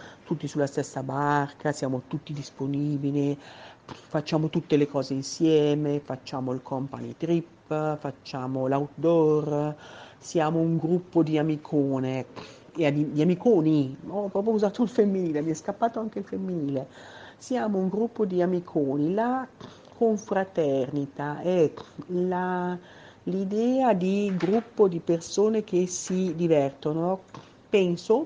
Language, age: Italian, 50-69